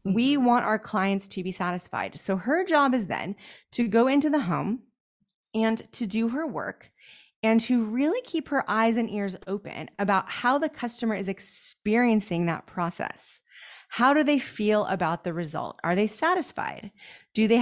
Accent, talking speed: American, 175 wpm